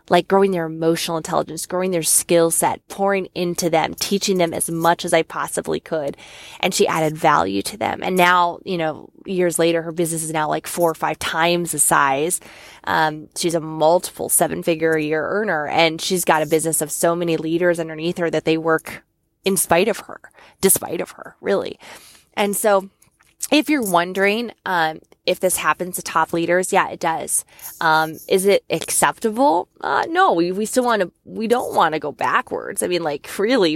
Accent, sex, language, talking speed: American, female, English, 195 wpm